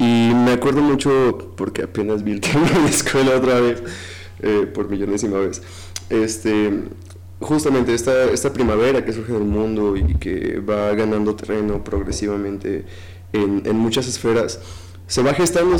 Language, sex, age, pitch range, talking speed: Spanish, male, 20-39, 100-125 Hz, 150 wpm